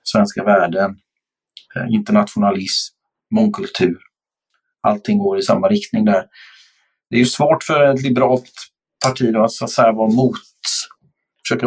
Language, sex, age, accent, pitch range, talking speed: Swedish, male, 50-69, native, 115-190 Hz, 130 wpm